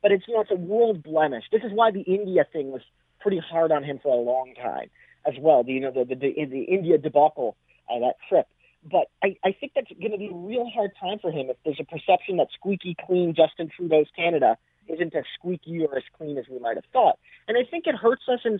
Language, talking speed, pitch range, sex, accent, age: English, 250 wpm, 145-200 Hz, male, American, 30-49